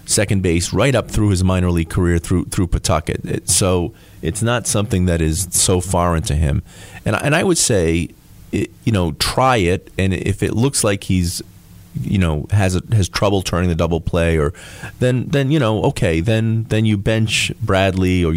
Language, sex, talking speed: English, male, 200 wpm